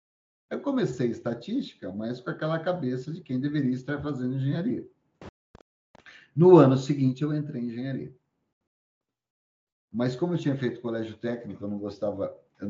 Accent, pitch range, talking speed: Brazilian, 115-150 Hz, 145 wpm